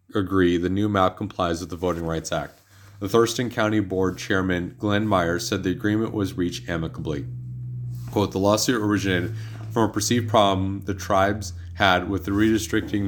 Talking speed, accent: 170 wpm, American